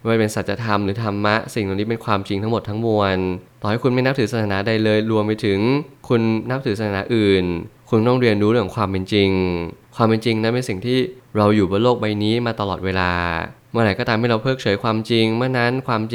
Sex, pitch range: male, 100-120 Hz